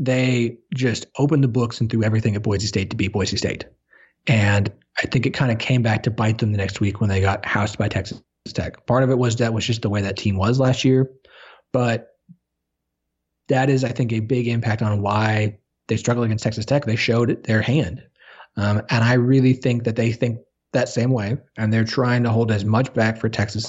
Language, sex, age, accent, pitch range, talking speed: English, male, 30-49, American, 110-130 Hz, 235 wpm